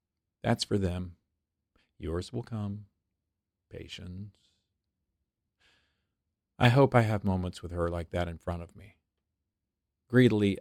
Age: 50-69